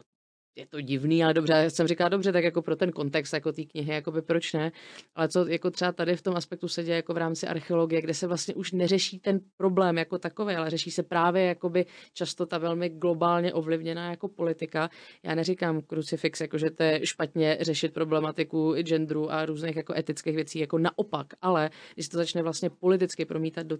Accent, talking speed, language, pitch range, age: native, 205 wpm, Czech, 160-170 Hz, 30-49